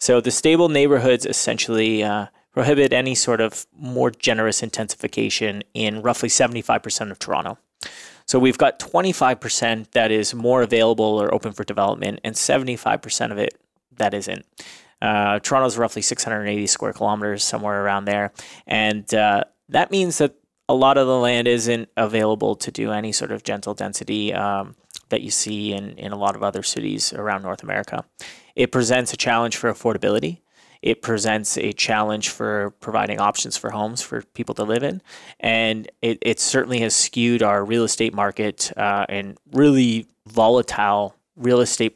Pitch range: 105-125 Hz